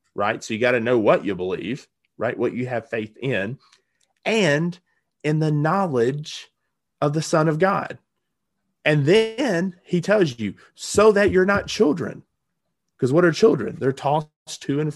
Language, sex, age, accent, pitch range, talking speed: English, male, 30-49, American, 115-150 Hz, 170 wpm